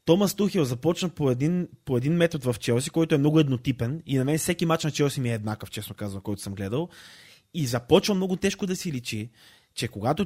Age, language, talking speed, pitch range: 20-39, Bulgarian, 220 wpm, 125-175 Hz